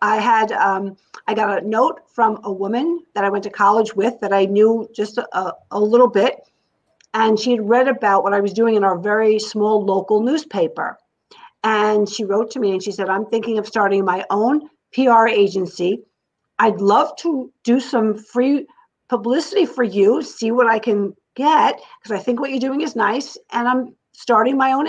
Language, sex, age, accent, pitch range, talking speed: English, female, 50-69, American, 200-255 Hz, 200 wpm